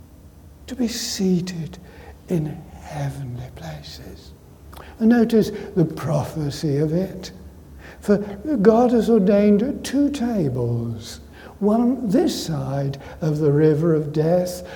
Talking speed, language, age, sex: 105 wpm, English, 60-79, male